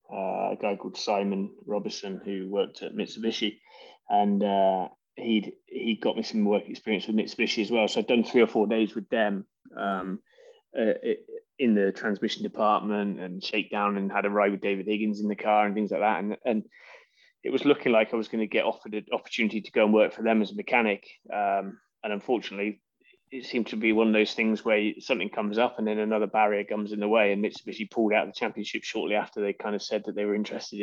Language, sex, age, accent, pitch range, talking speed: English, male, 20-39, British, 100-115 Hz, 230 wpm